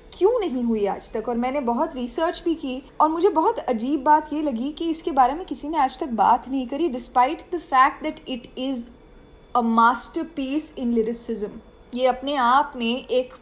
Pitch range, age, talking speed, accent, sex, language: 230-300 Hz, 10-29, 195 wpm, native, female, Hindi